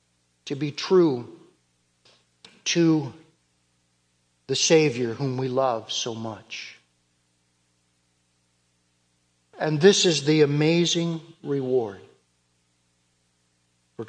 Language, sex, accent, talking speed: English, male, American, 75 wpm